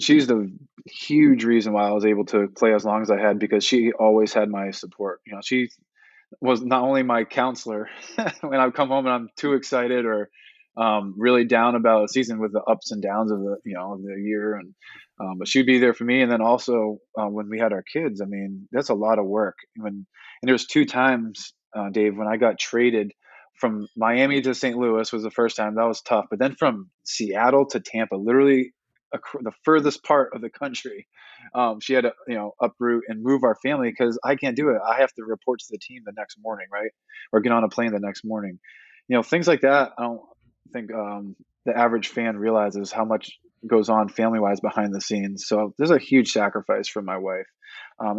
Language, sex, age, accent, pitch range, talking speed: English, male, 20-39, American, 105-125 Hz, 225 wpm